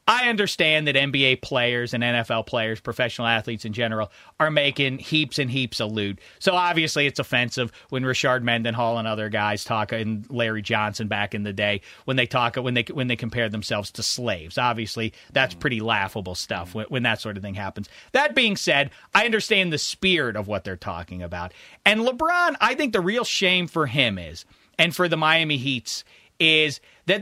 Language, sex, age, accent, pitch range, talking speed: English, male, 30-49, American, 120-200 Hz, 195 wpm